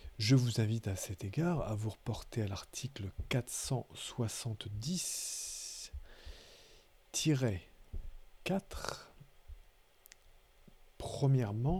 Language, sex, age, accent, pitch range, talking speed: English, male, 40-59, French, 90-135 Hz, 65 wpm